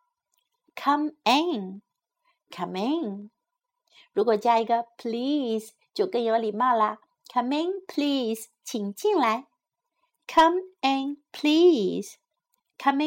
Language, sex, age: Chinese, female, 50-69